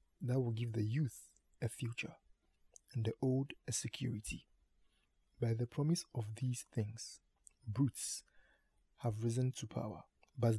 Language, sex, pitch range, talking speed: English, male, 110-125 Hz, 135 wpm